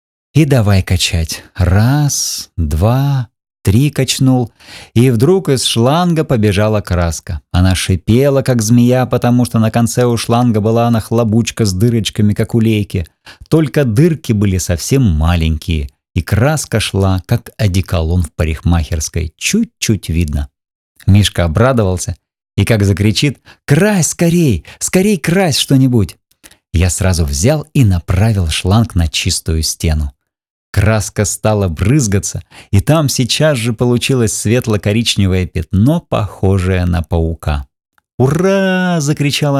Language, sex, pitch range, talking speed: Russian, male, 95-130 Hz, 120 wpm